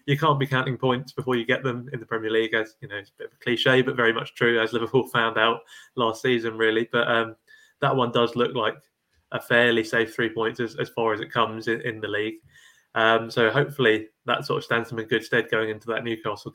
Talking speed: 255 wpm